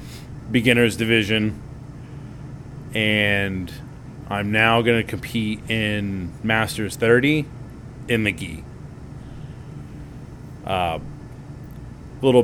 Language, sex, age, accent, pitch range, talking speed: English, male, 20-39, American, 105-130 Hz, 80 wpm